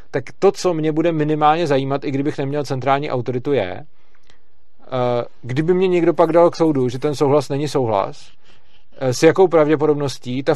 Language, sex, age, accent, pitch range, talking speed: Czech, male, 40-59, native, 125-150 Hz, 165 wpm